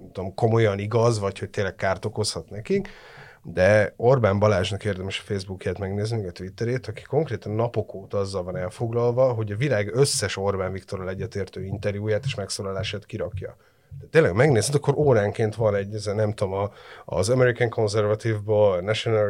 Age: 30-49